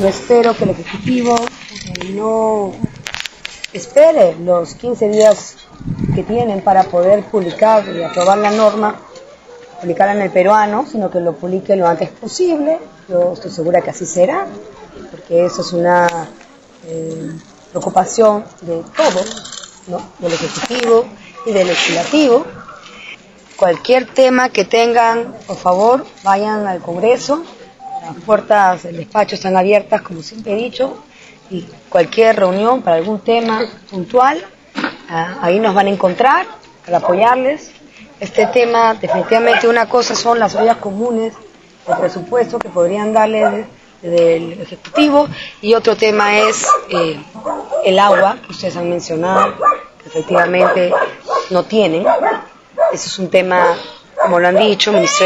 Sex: female